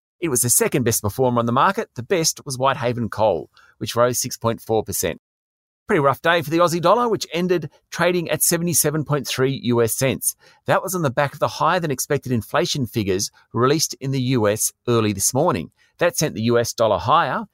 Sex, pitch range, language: male, 120-155 Hz, English